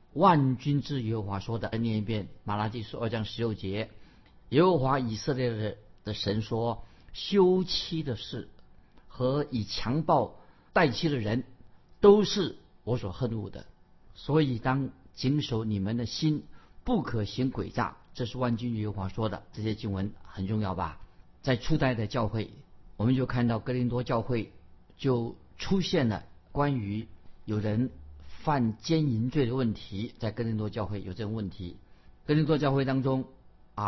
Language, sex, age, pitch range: Chinese, male, 50-69, 105-145 Hz